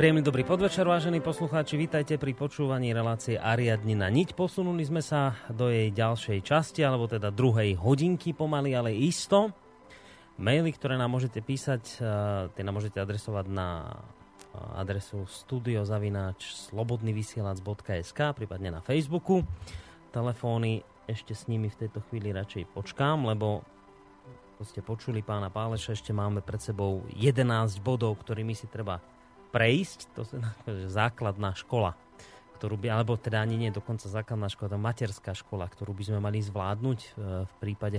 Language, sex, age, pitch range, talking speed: Slovak, male, 30-49, 105-130 Hz, 140 wpm